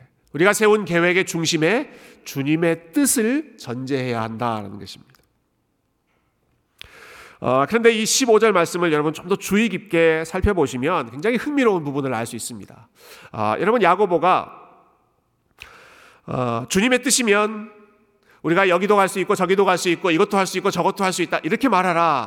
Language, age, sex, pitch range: Korean, 40-59, male, 145-225 Hz